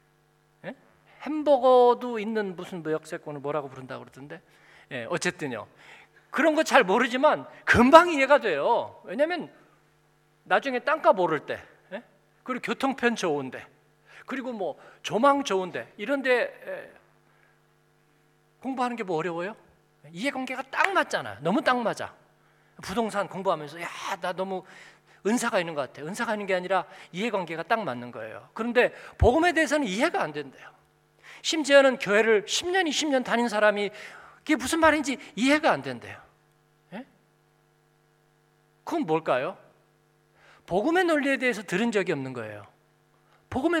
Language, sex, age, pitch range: Korean, male, 40-59, 185-280 Hz